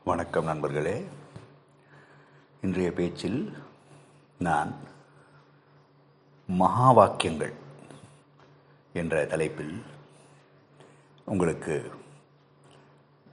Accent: native